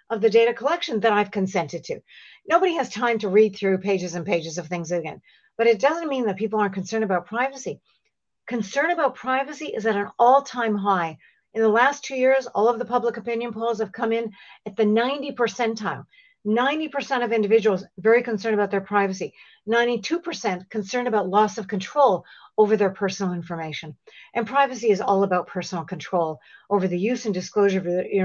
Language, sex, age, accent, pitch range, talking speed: English, female, 50-69, American, 200-255 Hz, 190 wpm